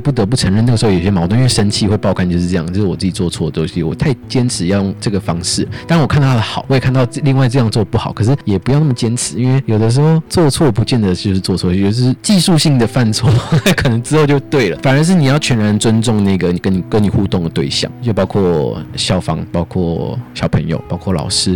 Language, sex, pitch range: Chinese, male, 95-130 Hz